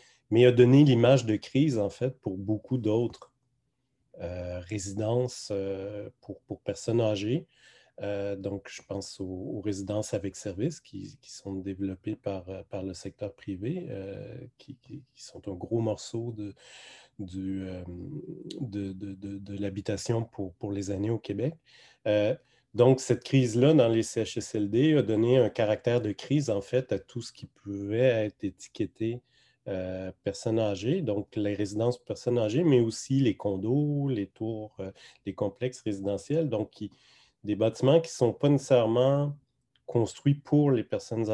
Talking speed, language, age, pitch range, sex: 160 wpm, French, 30-49, 100-130 Hz, male